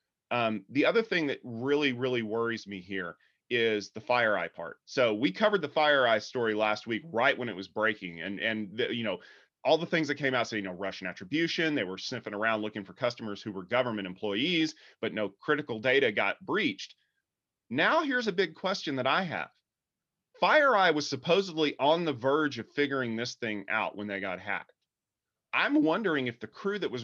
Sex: male